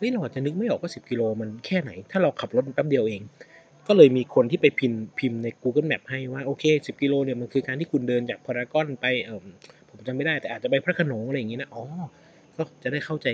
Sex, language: male, Thai